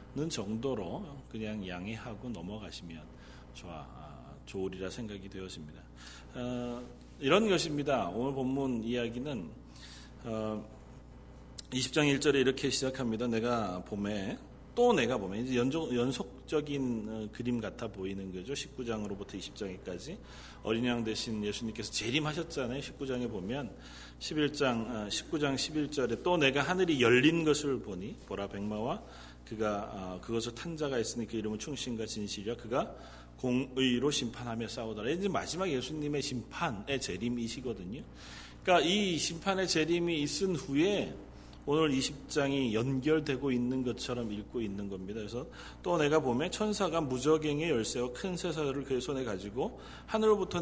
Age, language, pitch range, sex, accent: 40-59, Korean, 105-140 Hz, male, native